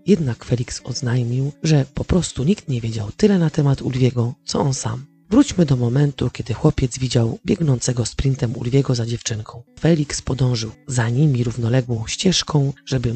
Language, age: Polish, 40-59